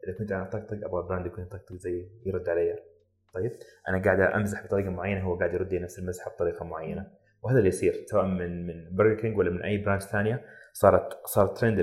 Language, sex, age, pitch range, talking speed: Arabic, male, 30-49, 90-115 Hz, 205 wpm